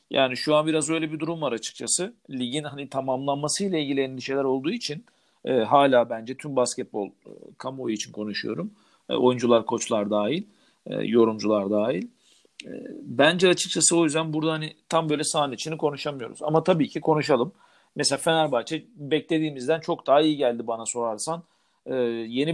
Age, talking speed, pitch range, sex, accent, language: 50-69, 155 wpm, 125-160 Hz, male, native, Turkish